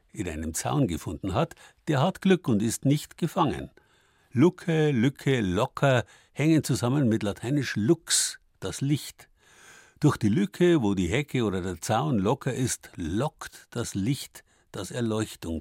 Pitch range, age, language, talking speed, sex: 95-140 Hz, 60-79, German, 145 wpm, male